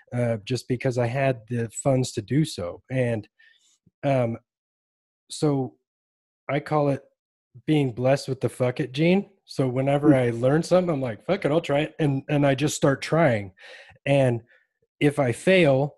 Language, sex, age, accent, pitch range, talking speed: English, male, 20-39, American, 120-145 Hz, 170 wpm